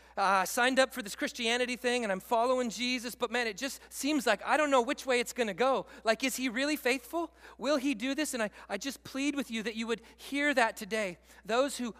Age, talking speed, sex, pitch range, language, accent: 40-59, 245 wpm, male, 180-245 Hz, English, American